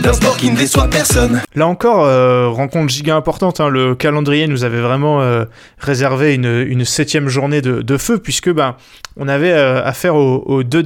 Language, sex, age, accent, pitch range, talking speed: French, male, 20-39, French, 130-155 Hz, 165 wpm